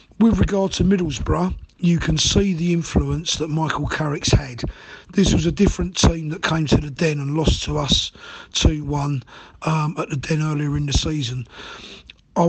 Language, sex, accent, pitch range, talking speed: English, male, British, 145-165 Hz, 185 wpm